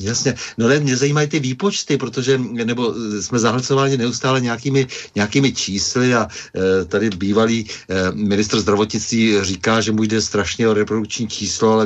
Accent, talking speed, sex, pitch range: native, 155 wpm, male, 100-115 Hz